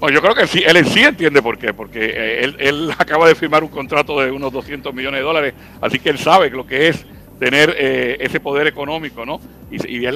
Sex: male